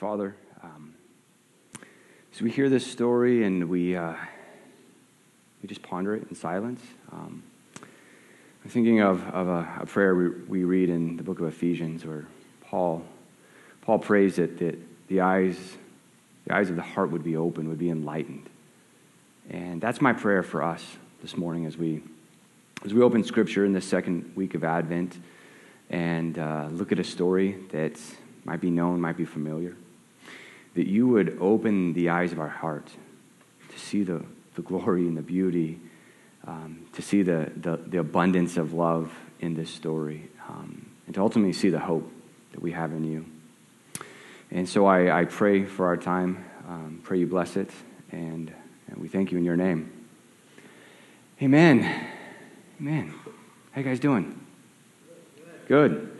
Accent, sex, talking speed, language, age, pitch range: American, male, 165 wpm, English, 30-49, 80-95 Hz